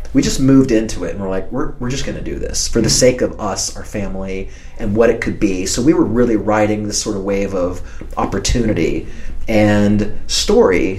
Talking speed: 220 wpm